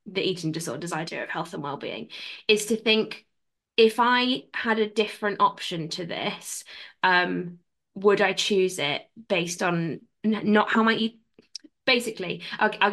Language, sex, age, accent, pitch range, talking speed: English, female, 20-39, British, 175-205 Hz, 155 wpm